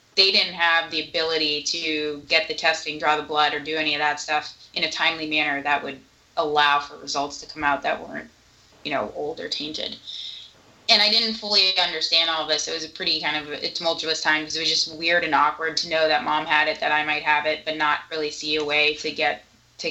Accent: American